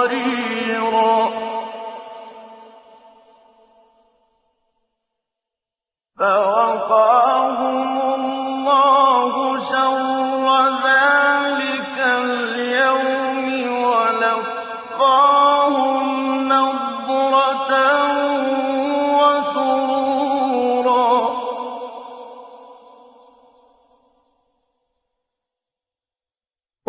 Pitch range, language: 240-270 Hz, Persian